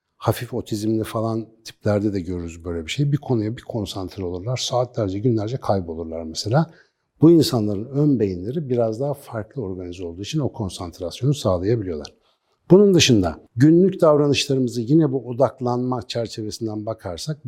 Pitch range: 105-150 Hz